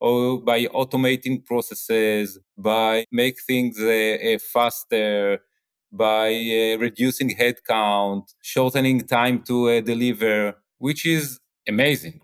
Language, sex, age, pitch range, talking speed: English, male, 30-49, 115-150 Hz, 105 wpm